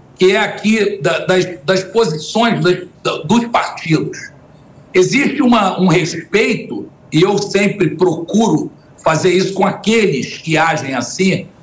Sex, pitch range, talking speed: male, 175-220 Hz, 115 wpm